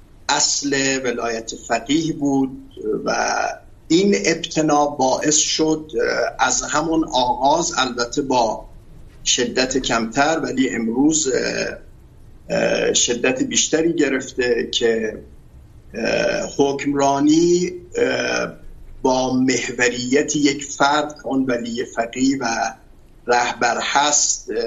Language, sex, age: Urdu, male, 50-69